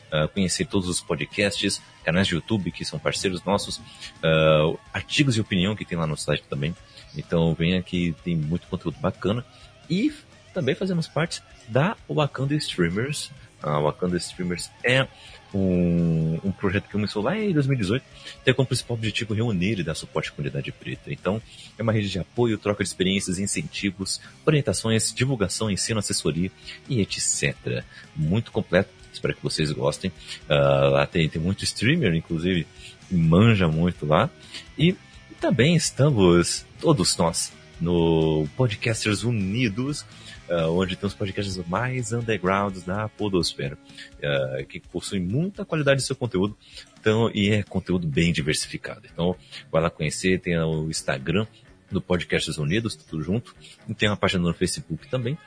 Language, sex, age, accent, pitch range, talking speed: Portuguese, male, 30-49, Brazilian, 85-120 Hz, 160 wpm